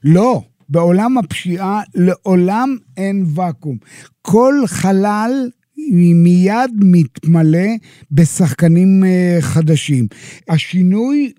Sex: male